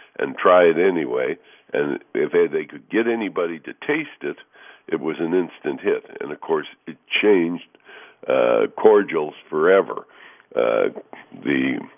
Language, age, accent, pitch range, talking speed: English, 60-79, American, 285-435 Hz, 145 wpm